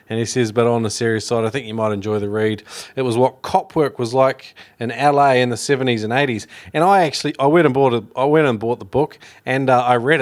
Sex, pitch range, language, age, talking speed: male, 110-140 Hz, English, 20-39, 275 wpm